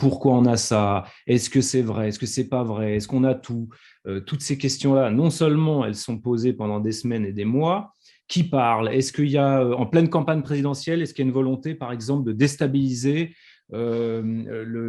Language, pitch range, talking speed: French, 120-150 Hz, 220 wpm